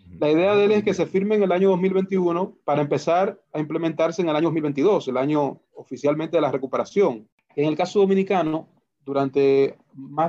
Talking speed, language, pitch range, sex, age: 185 wpm, Spanish, 145-180 Hz, male, 30-49